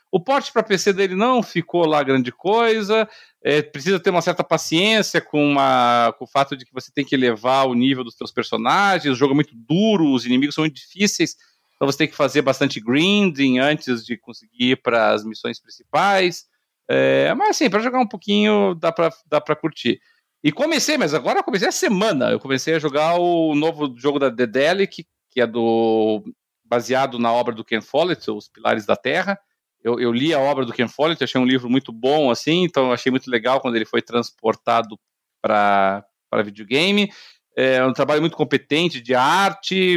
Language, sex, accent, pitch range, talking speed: Portuguese, male, Brazilian, 125-190 Hz, 195 wpm